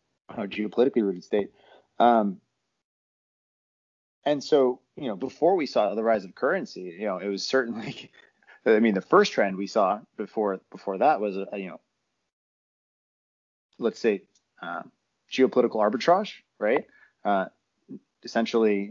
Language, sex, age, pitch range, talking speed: English, male, 30-49, 100-120 Hz, 135 wpm